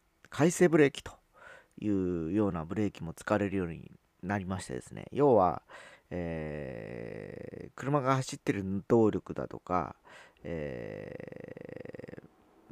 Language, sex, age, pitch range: Japanese, male, 40-59, 85-115 Hz